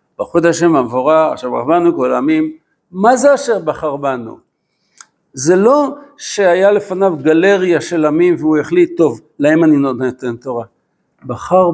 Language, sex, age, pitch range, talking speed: Hebrew, male, 60-79, 150-225 Hz, 145 wpm